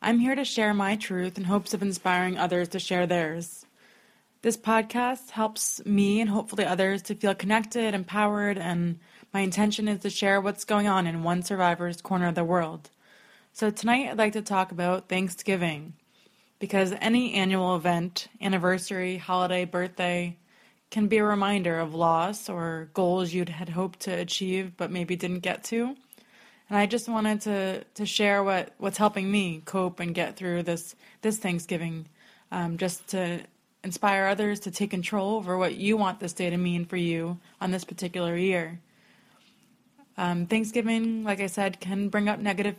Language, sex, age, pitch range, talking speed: English, female, 20-39, 175-210 Hz, 175 wpm